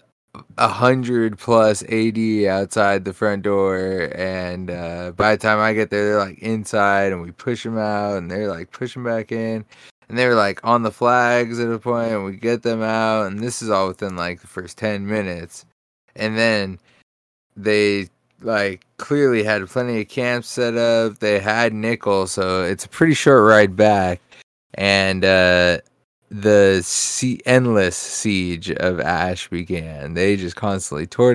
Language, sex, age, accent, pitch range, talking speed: English, male, 20-39, American, 95-115 Hz, 170 wpm